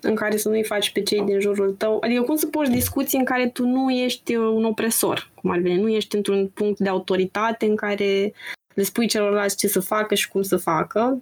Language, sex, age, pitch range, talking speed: Romanian, female, 20-39, 195-240 Hz, 230 wpm